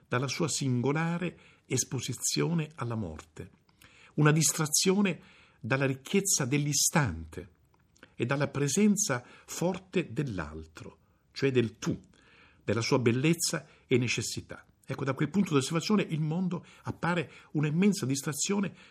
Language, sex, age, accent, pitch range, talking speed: Italian, male, 50-69, native, 105-160 Hz, 110 wpm